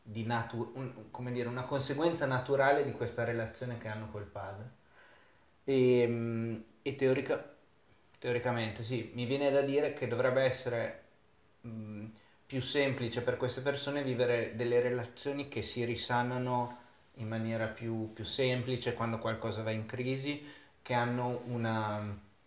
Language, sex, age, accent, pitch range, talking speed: Italian, male, 30-49, native, 110-130 Hz, 140 wpm